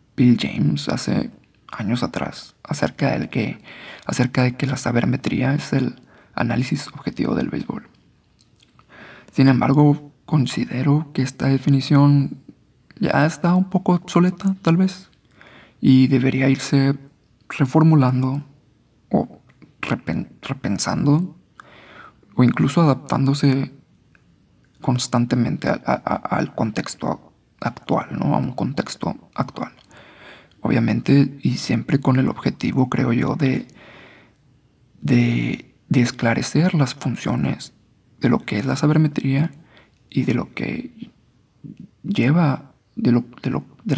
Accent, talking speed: Mexican, 105 wpm